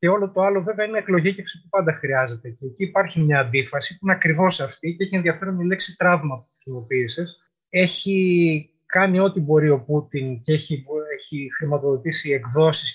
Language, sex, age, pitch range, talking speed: Greek, male, 30-49, 130-170 Hz, 175 wpm